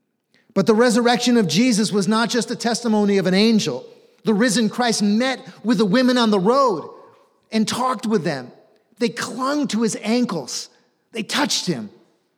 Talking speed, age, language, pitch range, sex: 170 wpm, 40-59, English, 150-235 Hz, male